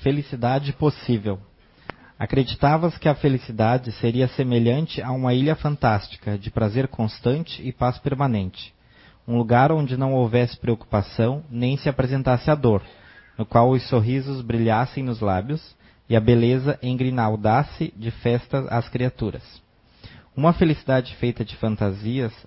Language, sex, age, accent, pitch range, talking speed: Portuguese, male, 20-39, Brazilian, 110-135 Hz, 130 wpm